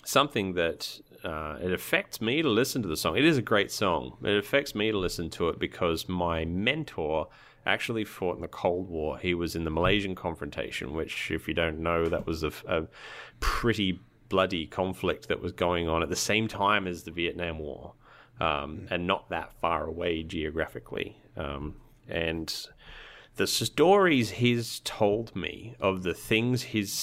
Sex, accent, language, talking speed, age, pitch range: male, Australian, English, 180 wpm, 30-49, 85-110 Hz